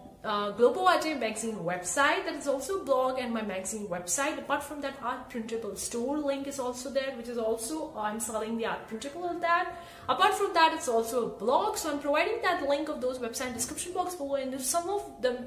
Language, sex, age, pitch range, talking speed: English, female, 30-49, 220-285 Hz, 230 wpm